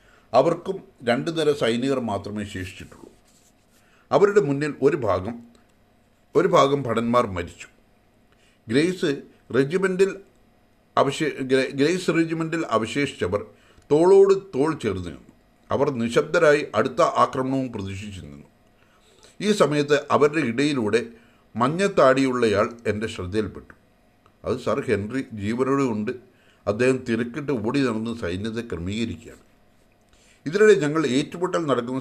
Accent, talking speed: Indian, 80 wpm